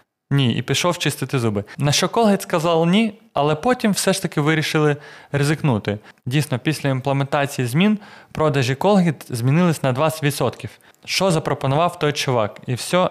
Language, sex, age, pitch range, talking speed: Ukrainian, male, 20-39, 135-180 Hz, 145 wpm